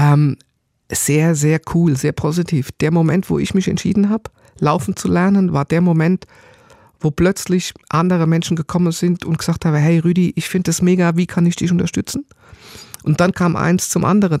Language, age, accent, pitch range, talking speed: German, 50-69, German, 150-175 Hz, 185 wpm